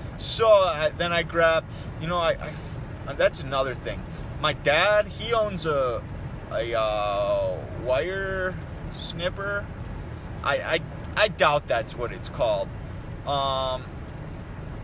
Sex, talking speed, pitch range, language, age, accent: male, 115 wpm, 140-210 Hz, English, 30-49, American